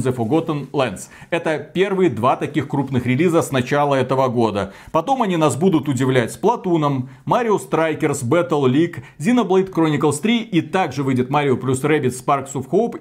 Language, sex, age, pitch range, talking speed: Russian, male, 30-49, 130-180 Hz, 165 wpm